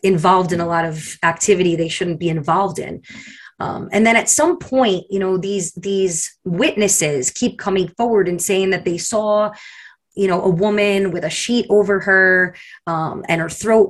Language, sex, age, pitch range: English, female, 20-39, 175-210 Hz